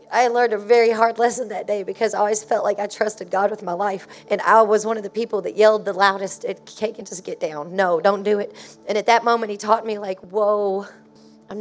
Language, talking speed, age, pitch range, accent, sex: English, 255 wpm, 40-59, 200-230 Hz, American, female